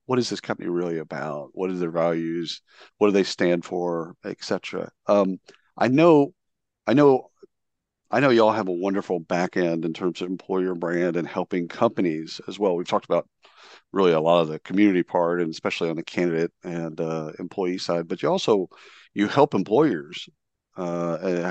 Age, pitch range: 50-69, 85-105 Hz